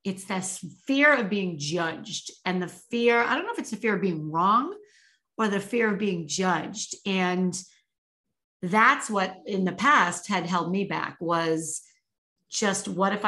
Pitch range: 175-215 Hz